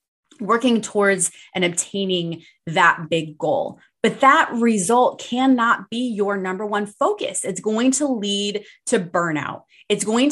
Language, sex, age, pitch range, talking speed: English, female, 20-39, 195-260 Hz, 140 wpm